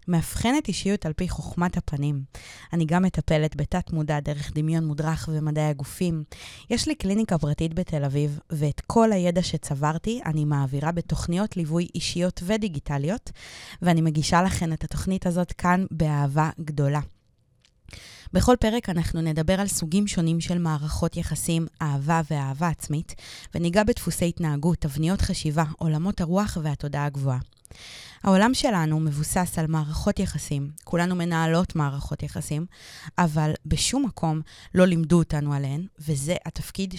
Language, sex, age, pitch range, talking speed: Hebrew, female, 20-39, 155-180 Hz, 130 wpm